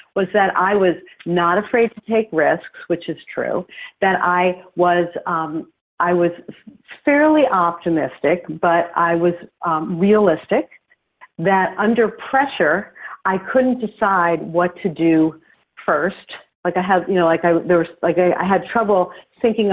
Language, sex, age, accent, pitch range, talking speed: English, female, 50-69, American, 170-225 Hz, 120 wpm